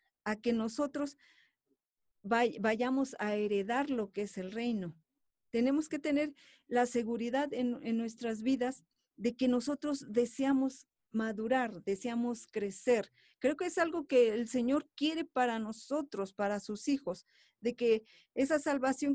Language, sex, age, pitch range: Spanish, female, 40-59, 210-275 Hz